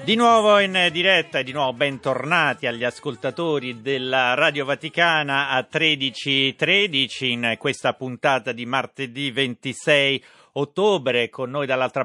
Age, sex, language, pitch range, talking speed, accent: 40-59, male, Italian, 120-150 Hz, 125 wpm, native